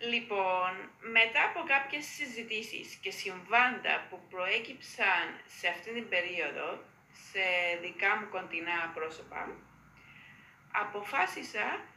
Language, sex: Greek, female